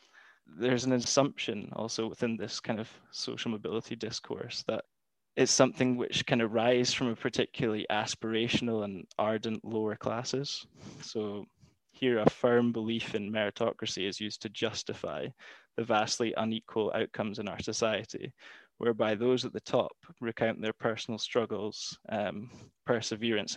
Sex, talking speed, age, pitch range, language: male, 135 wpm, 10-29, 110-120 Hz, English